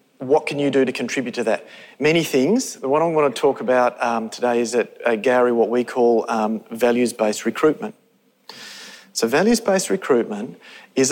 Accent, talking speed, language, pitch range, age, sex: Australian, 190 wpm, English, 120-150 Hz, 40-59, male